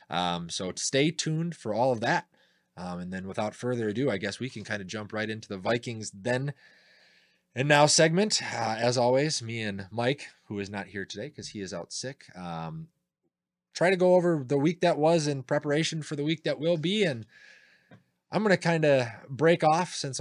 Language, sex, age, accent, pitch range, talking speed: English, male, 20-39, American, 100-140 Hz, 210 wpm